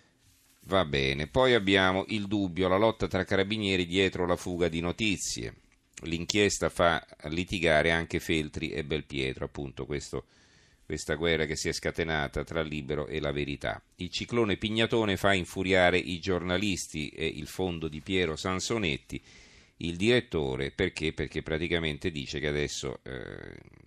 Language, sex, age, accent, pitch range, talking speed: Italian, male, 40-59, native, 75-95 Hz, 145 wpm